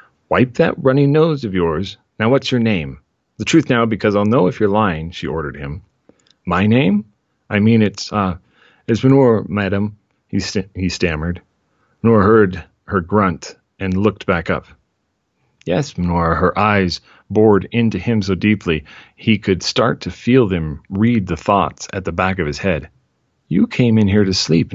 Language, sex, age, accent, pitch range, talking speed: English, male, 40-59, American, 90-110 Hz, 175 wpm